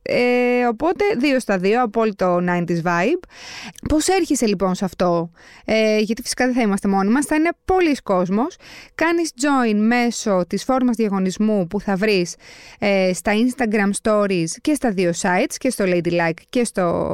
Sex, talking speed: female, 165 wpm